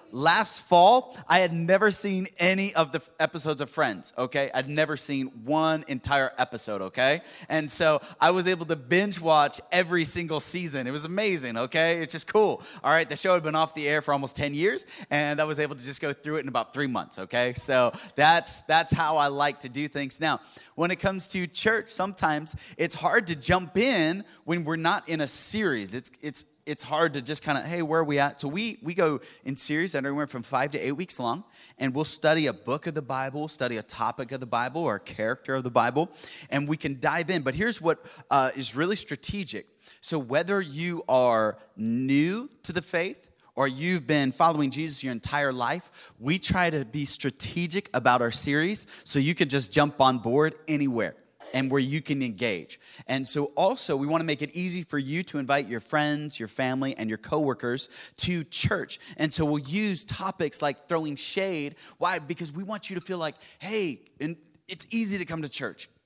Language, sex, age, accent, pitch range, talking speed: English, male, 20-39, American, 140-175 Hz, 210 wpm